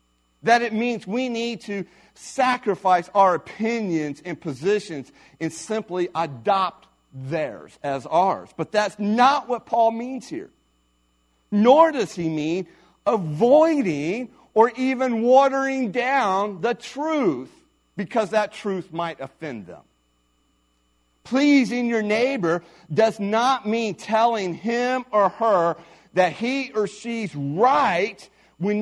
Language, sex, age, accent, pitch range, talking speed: English, male, 40-59, American, 150-240 Hz, 120 wpm